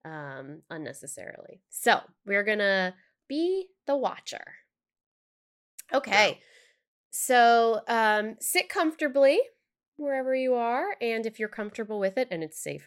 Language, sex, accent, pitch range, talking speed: English, female, American, 195-280 Hz, 120 wpm